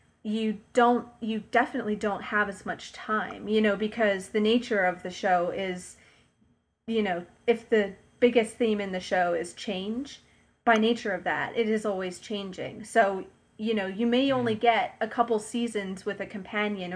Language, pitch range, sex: English, 190-225 Hz, female